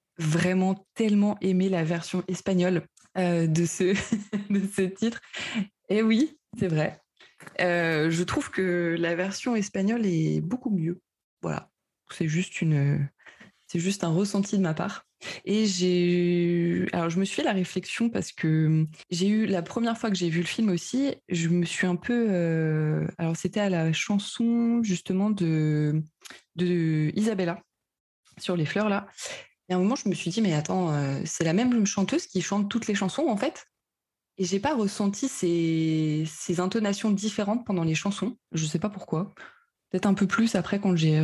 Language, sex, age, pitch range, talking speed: French, female, 20-39, 170-205 Hz, 175 wpm